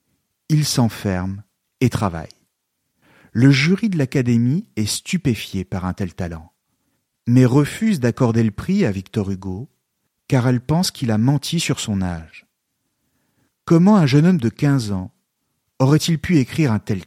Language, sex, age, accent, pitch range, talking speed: French, male, 50-69, French, 105-150 Hz, 150 wpm